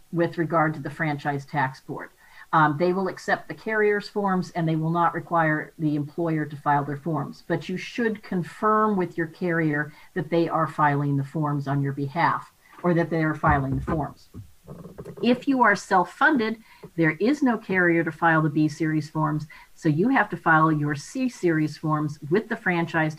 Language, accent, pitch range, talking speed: English, American, 155-185 Hz, 185 wpm